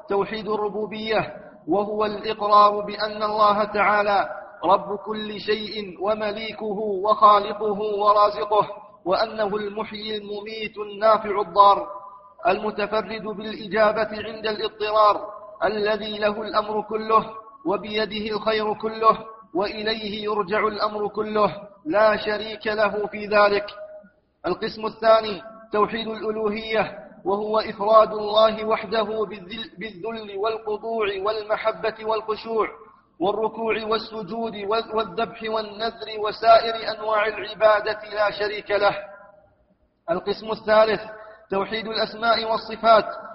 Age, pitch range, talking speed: 40-59, 210-220 Hz, 90 wpm